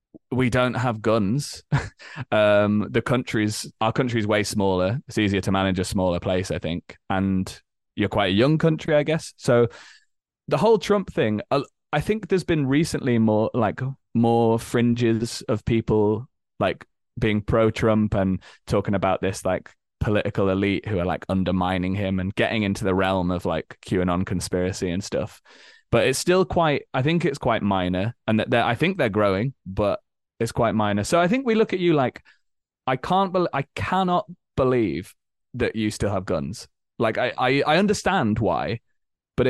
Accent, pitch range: British, 100-140 Hz